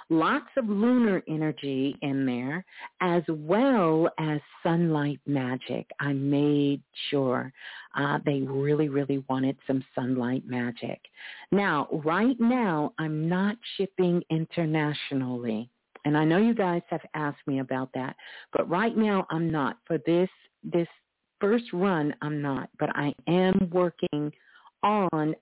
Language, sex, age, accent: English, female, 50-69, American